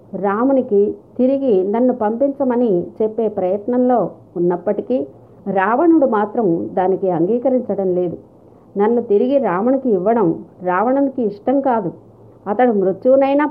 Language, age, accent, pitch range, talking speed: Telugu, 50-69, native, 190-240 Hz, 95 wpm